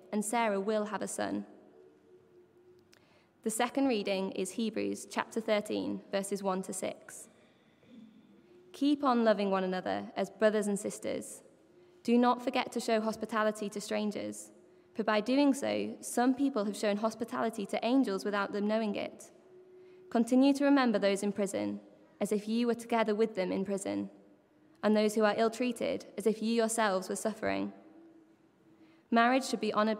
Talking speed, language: 160 wpm, English